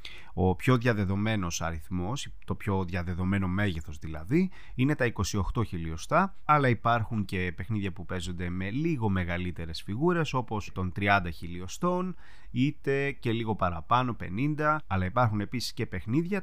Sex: male